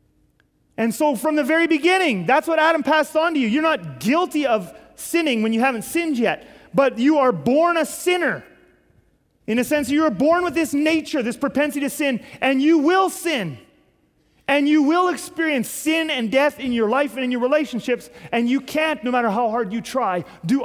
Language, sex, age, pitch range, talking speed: English, male, 30-49, 200-275 Hz, 205 wpm